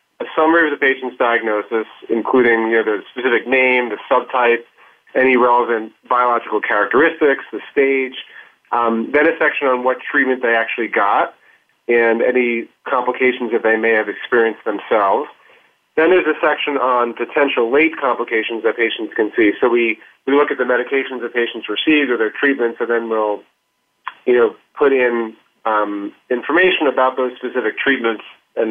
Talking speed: 165 wpm